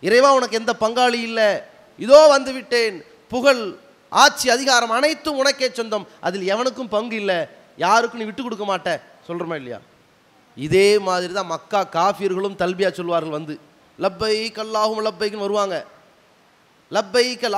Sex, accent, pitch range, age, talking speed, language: male, Indian, 180-245 Hz, 30-49, 125 wpm, English